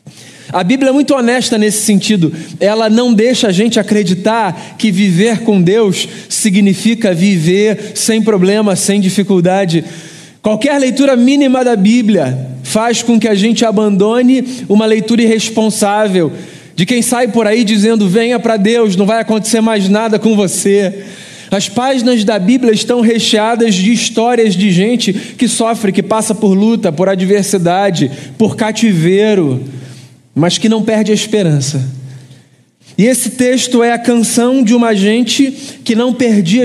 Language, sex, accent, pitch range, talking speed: Portuguese, male, Brazilian, 190-230 Hz, 150 wpm